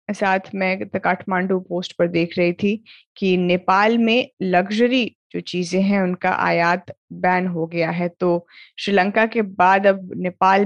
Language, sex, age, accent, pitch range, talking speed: Hindi, female, 20-39, native, 175-205 Hz, 150 wpm